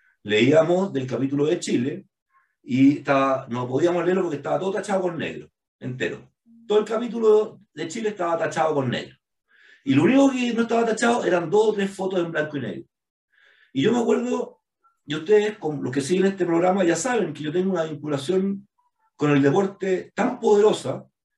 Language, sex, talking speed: Spanish, male, 180 wpm